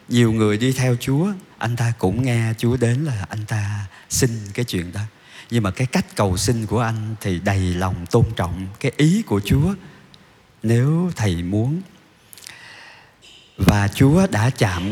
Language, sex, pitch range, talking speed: Vietnamese, male, 95-130 Hz, 170 wpm